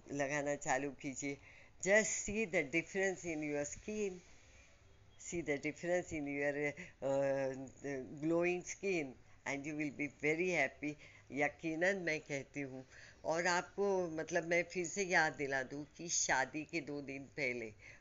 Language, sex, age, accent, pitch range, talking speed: Hindi, female, 50-69, native, 135-175 Hz, 140 wpm